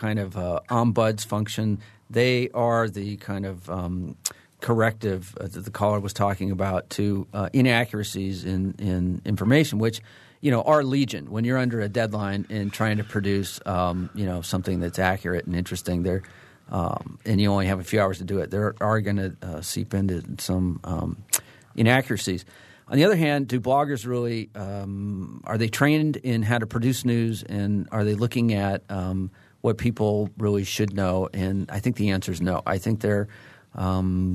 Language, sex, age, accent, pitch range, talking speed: English, male, 40-59, American, 95-120 Hz, 185 wpm